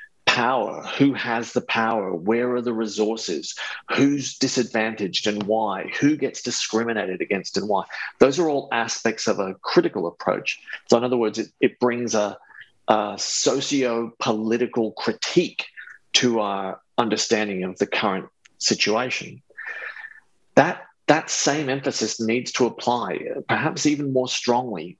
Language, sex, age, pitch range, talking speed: English, male, 40-59, 110-140 Hz, 135 wpm